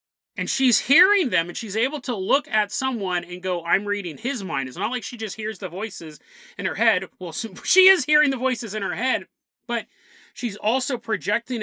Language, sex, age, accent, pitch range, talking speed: English, male, 30-49, American, 160-230 Hz, 210 wpm